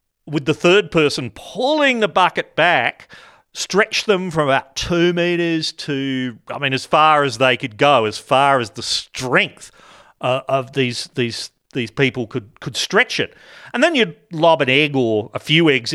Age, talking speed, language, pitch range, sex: 40-59, 175 wpm, English, 130-190 Hz, male